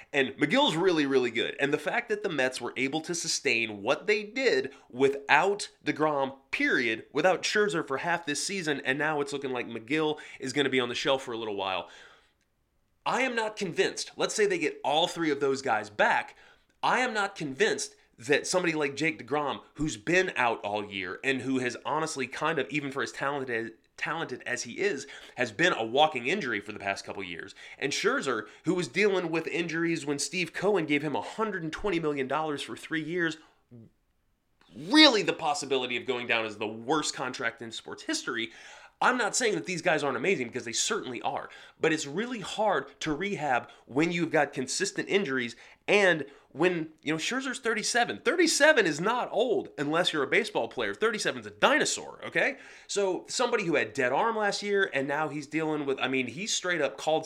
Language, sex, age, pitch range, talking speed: English, male, 30-49, 135-200 Hz, 200 wpm